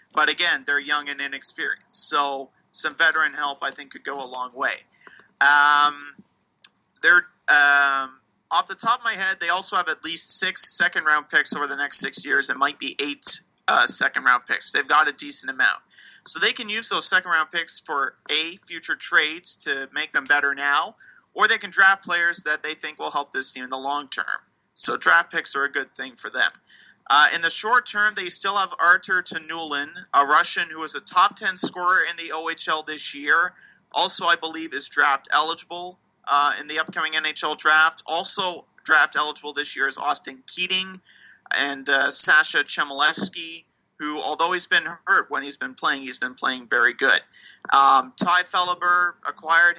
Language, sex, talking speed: English, male, 185 wpm